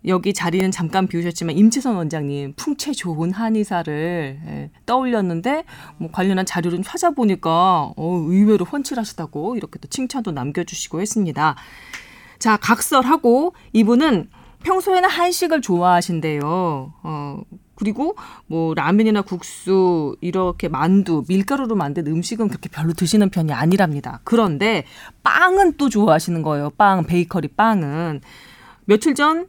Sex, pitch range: female, 165-240 Hz